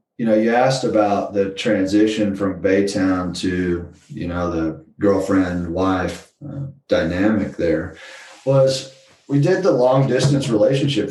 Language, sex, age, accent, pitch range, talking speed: English, male, 30-49, American, 95-110 Hz, 140 wpm